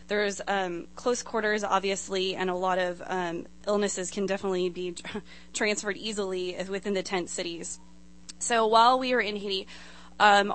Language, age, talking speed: English, 20-39, 155 wpm